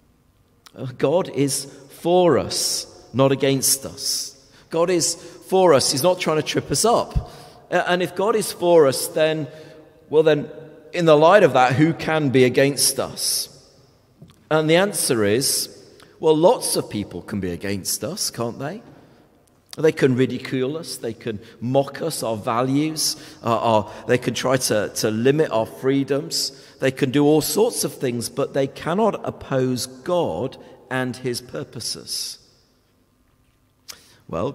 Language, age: English, 40-59